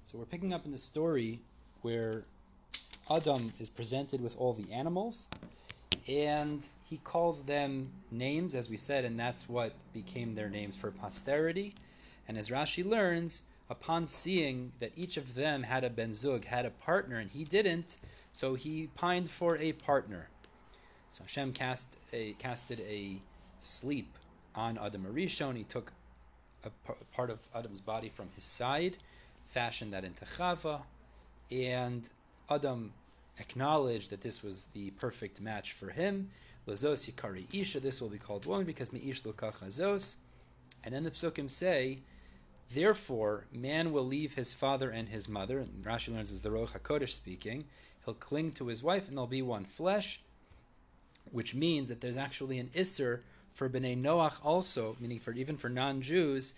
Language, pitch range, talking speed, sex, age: English, 110-150 Hz, 155 wpm, male, 30-49